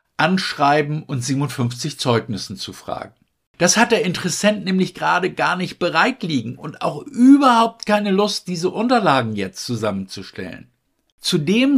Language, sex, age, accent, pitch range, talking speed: German, male, 60-79, German, 140-210 Hz, 130 wpm